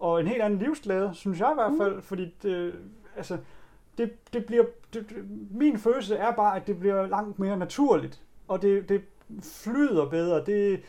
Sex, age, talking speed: male, 30-49, 185 wpm